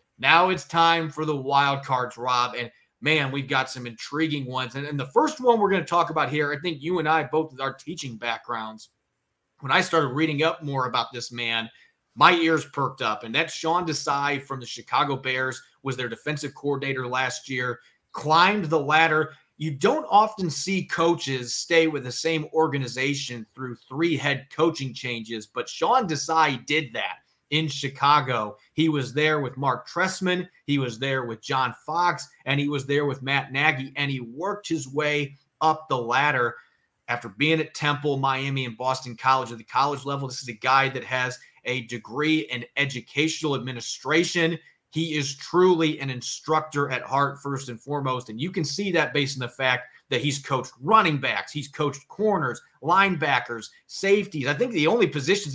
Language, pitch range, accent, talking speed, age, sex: English, 130-160 Hz, American, 185 wpm, 30-49, male